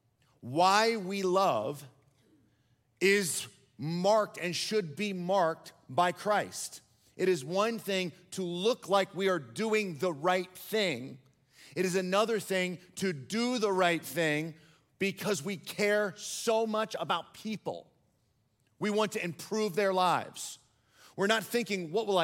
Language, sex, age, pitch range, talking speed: English, male, 40-59, 150-200 Hz, 140 wpm